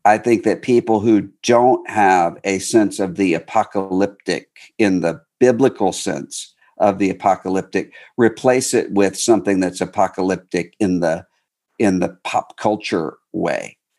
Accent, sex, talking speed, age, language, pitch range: American, male, 135 wpm, 50-69, English, 95-120 Hz